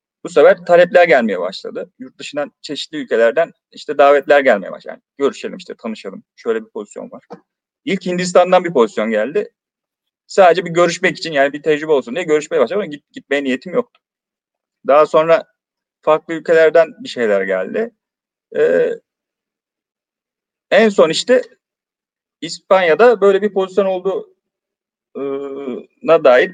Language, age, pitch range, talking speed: Turkish, 40-59, 155-235 Hz, 130 wpm